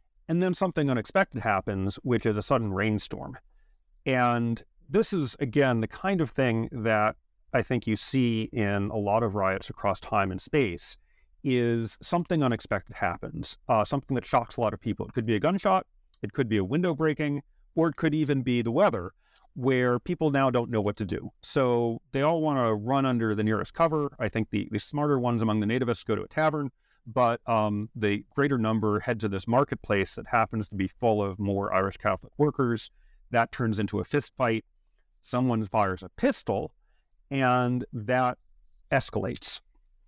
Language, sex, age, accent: English, male, 40-59, American